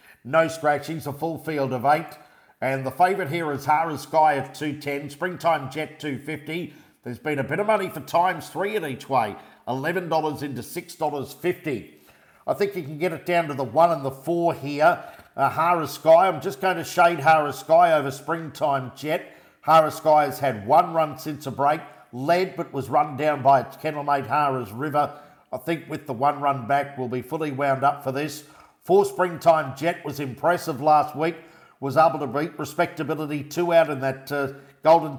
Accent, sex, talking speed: Australian, male, 195 wpm